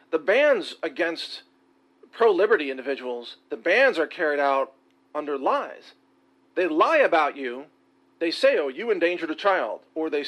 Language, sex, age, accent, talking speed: English, male, 40-59, American, 145 wpm